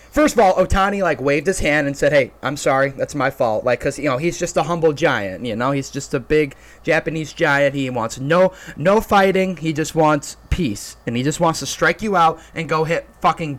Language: English